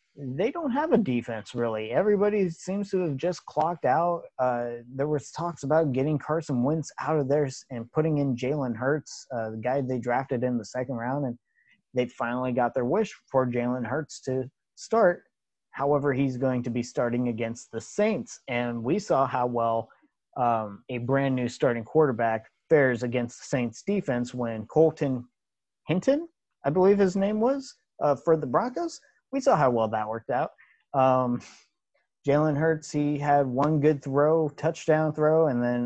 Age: 30-49